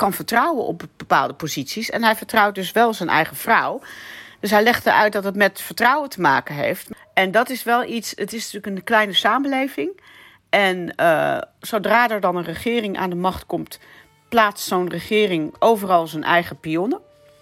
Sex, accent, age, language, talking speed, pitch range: female, Dutch, 40-59, Dutch, 185 wpm, 155-210 Hz